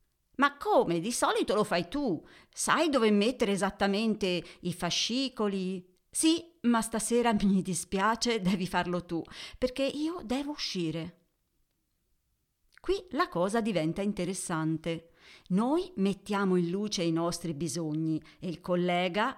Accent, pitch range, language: native, 170-240 Hz, Italian